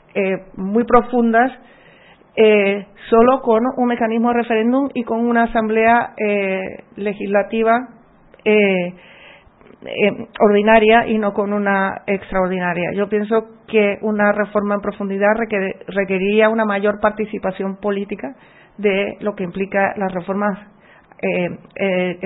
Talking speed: 115 wpm